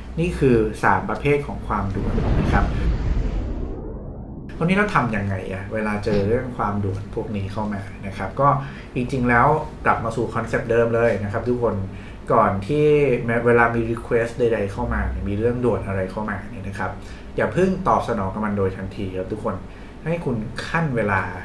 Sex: male